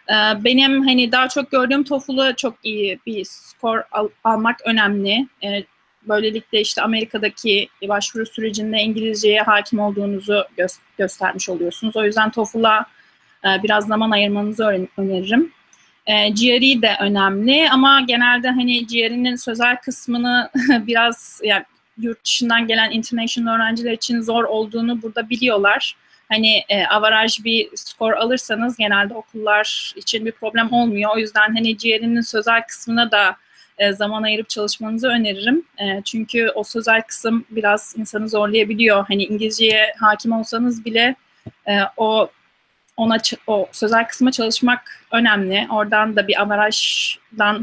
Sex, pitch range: female, 210-235 Hz